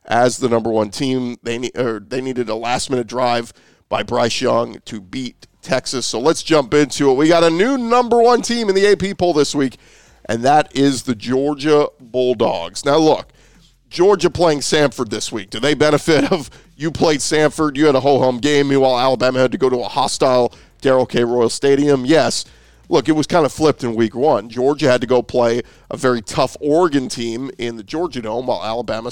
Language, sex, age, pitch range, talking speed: English, male, 40-59, 120-160 Hz, 210 wpm